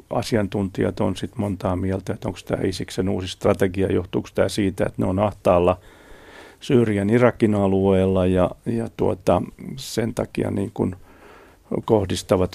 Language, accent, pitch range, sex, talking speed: Finnish, native, 95-105 Hz, male, 130 wpm